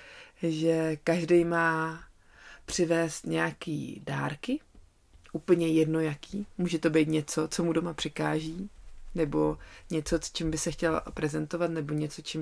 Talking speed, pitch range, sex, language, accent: 135 wpm, 155-175 Hz, female, Czech, native